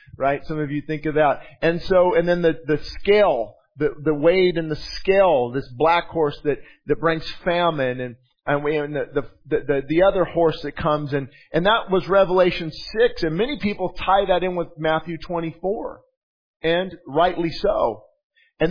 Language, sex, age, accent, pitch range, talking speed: English, male, 40-59, American, 155-205 Hz, 190 wpm